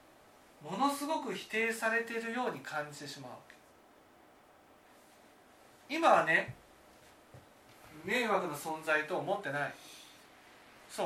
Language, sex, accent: Japanese, male, native